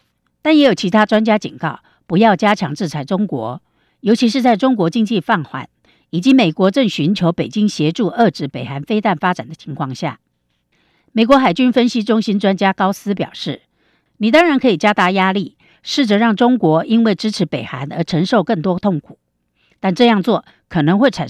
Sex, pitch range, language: female, 160-225 Hz, Chinese